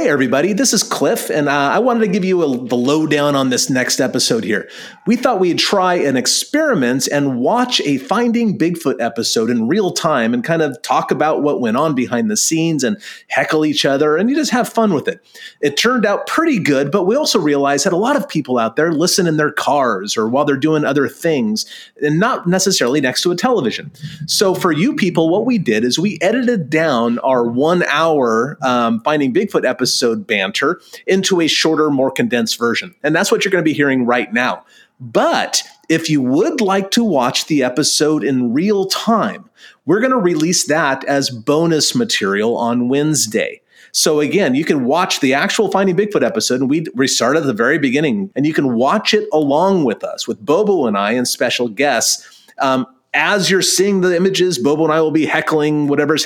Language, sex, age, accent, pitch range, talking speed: English, male, 30-49, American, 140-210 Hz, 205 wpm